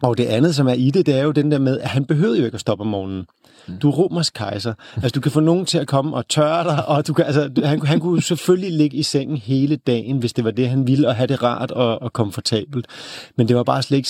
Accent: native